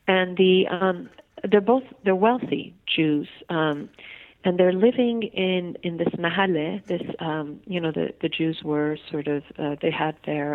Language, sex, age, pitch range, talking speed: English, female, 40-59, 155-195 Hz, 170 wpm